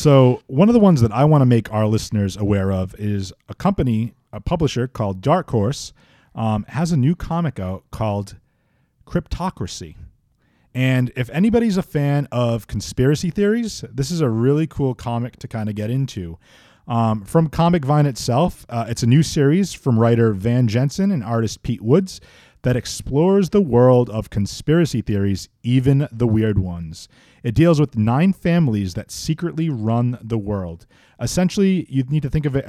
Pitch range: 110-145 Hz